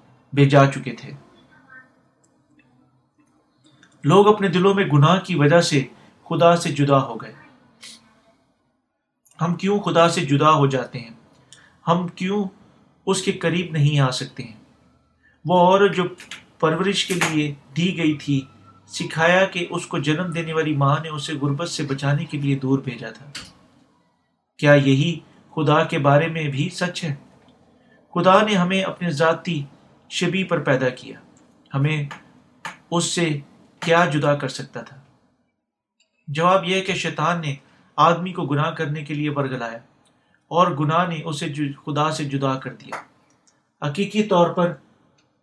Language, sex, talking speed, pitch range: Urdu, male, 145 wpm, 145-175 Hz